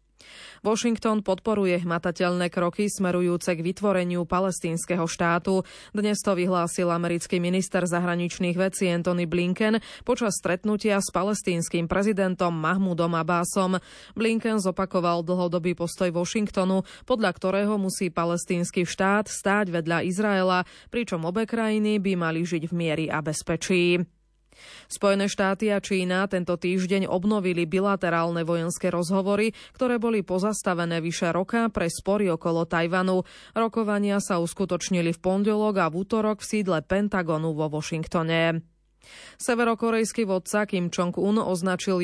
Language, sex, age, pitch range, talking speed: Slovak, female, 20-39, 175-205 Hz, 120 wpm